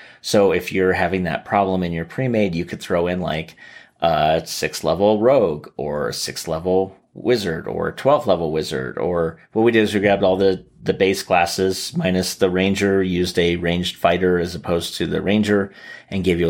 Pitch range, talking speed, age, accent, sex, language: 85-100 Hz, 180 wpm, 30-49, American, male, English